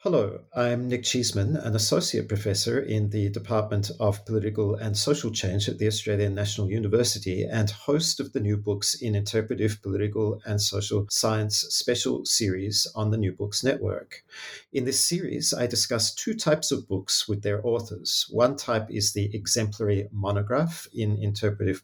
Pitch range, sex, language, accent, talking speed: 105-120 Hz, male, English, Australian, 160 wpm